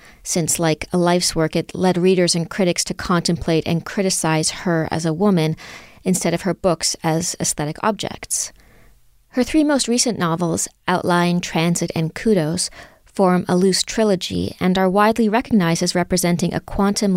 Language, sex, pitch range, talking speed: English, female, 165-190 Hz, 160 wpm